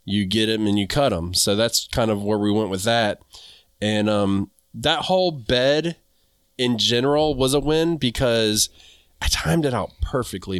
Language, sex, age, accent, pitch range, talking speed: English, male, 20-39, American, 100-135 Hz, 180 wpm